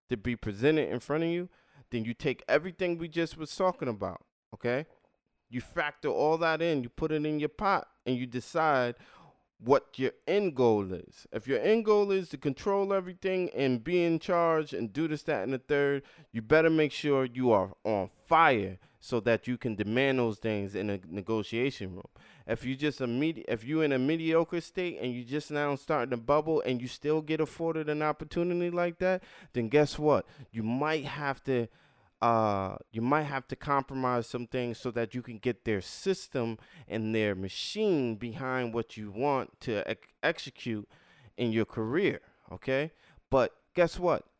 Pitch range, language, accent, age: 115-160 Hz, English, American, 20-39